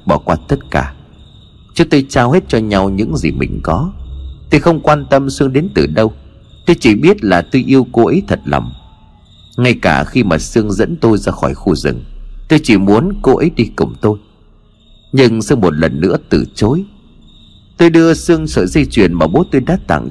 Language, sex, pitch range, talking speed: Vietnamese, male, 80-125 Hz, 205 wpm